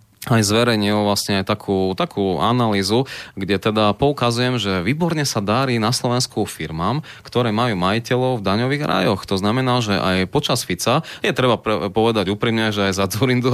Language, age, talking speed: Slovak, 20-39, 165 wpm